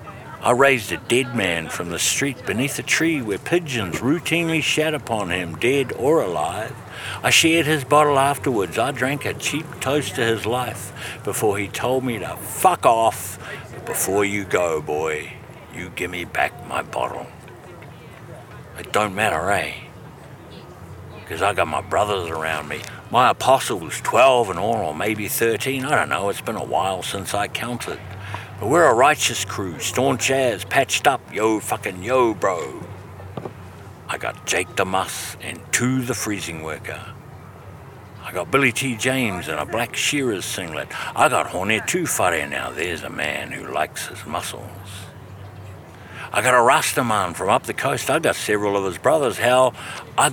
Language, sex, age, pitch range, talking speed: English, male, 60-79, 100-135 Hz, 165 wpm